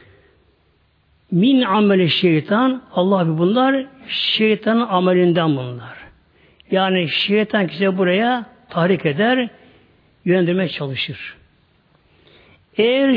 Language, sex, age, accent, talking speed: Turkish, male, 60-79, native, 75 wpm